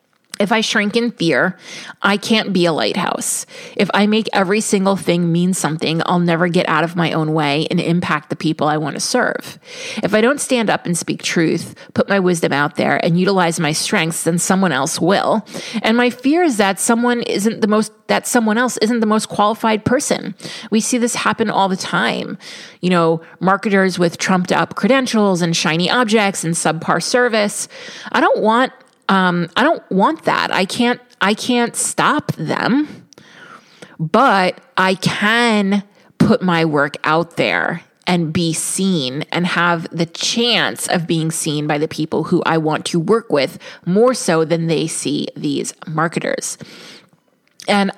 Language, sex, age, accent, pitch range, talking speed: English, female, 30-49, American, 165-220 Hz, 175 wpm